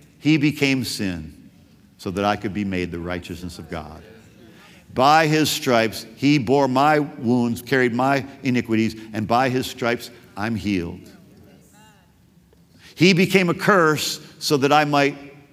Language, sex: English, male